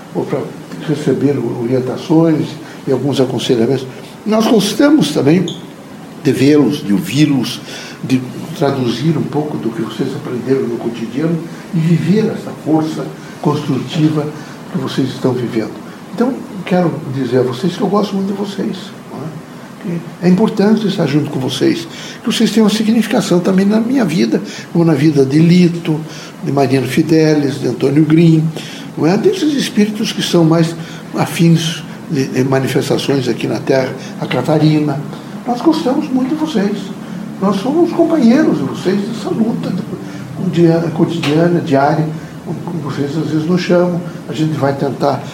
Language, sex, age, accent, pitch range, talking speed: Portuguese, male, 60-79, Brazilian, 150-205 Hz, 145 wpm